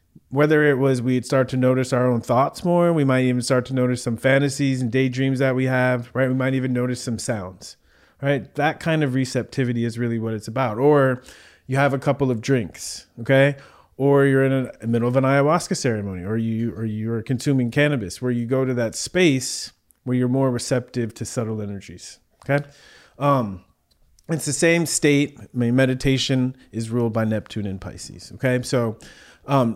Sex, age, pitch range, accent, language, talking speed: male, 30-49, 115-135 Hz, American, English, 195 wpm